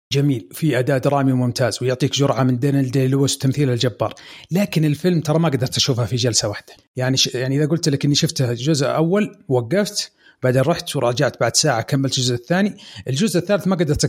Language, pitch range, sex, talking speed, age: Arabic, 130-160 Hz, male, 185 wpm, 30-49